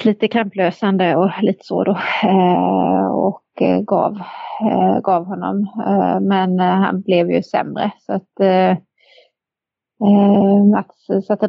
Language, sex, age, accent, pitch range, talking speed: Swedish, female, 30-49, native, 180-200 Hz, 135 wpm